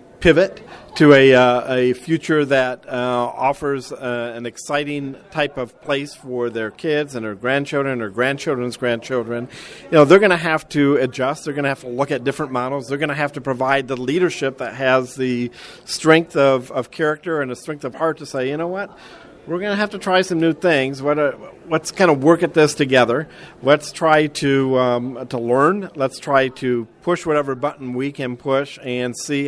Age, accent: 50-69, American